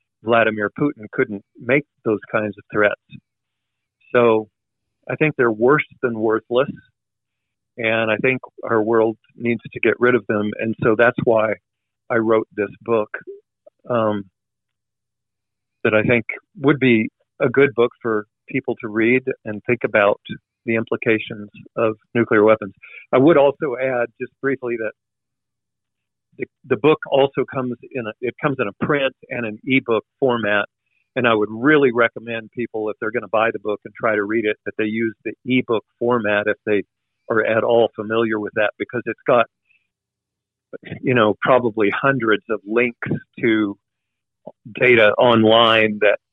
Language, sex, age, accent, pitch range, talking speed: English, male, 40-59, American, 110-125 Hz, 160 wpm